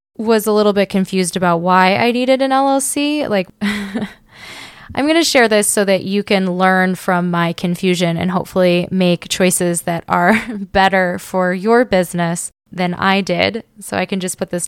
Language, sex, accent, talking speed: English, female, American, 180 wpm